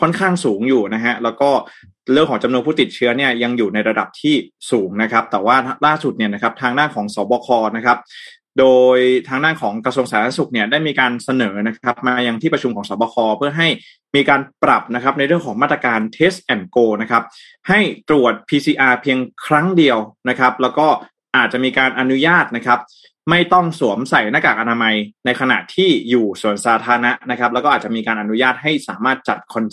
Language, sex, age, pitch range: Thai, male, 20-39, 115-150 Hz